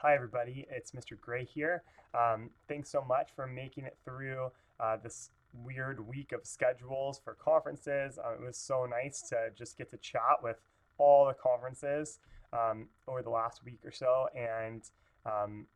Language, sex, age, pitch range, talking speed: English, male, 20-39, 115-155 Hz, 170 wpm